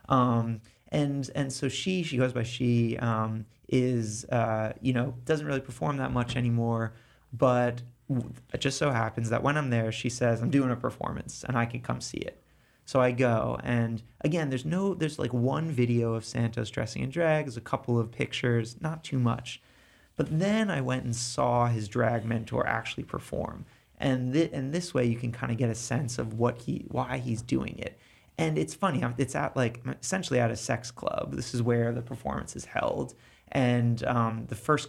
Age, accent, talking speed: 30-49, American, 200 wpm